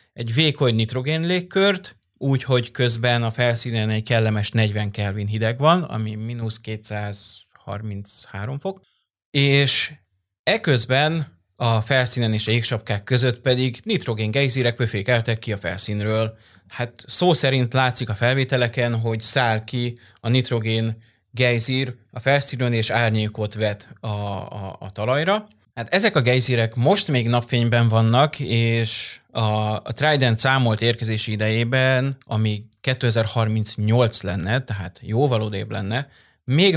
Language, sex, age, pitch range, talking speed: Hungarian, male, 20-39, 110-130 Hz, 125 wpm